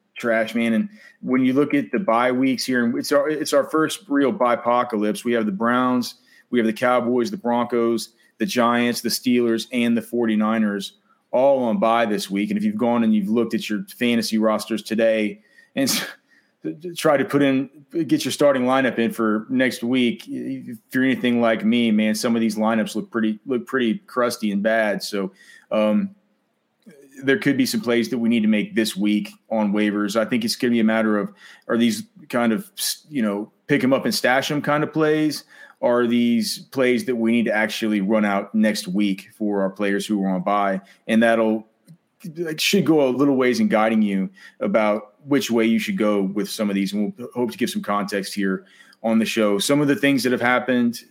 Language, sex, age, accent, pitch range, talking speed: English, male, 30-49, American, 110-140 Hz, 210 wpm